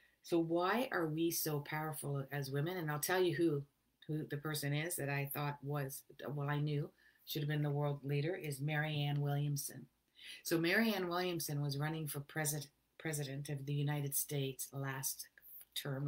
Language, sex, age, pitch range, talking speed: English, female, 50-69, 140-170 Hz, 175 wpm